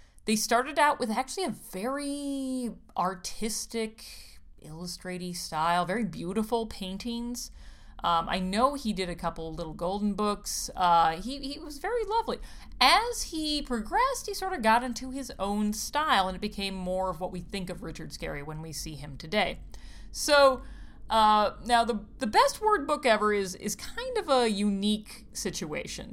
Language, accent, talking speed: English, American, 165 wpm